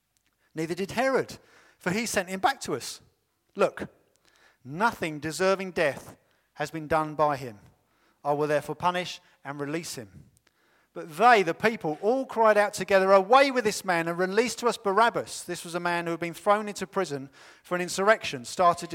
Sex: male